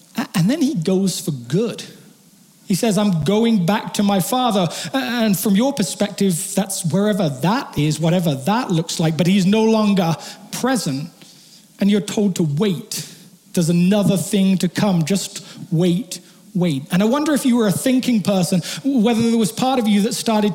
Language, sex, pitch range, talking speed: English, male, 180-220 Hz, 180 wpm